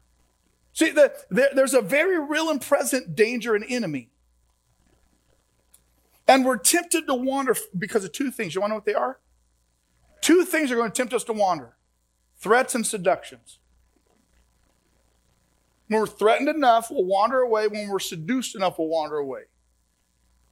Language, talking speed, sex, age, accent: English, 145 wpm, male, 40-59, American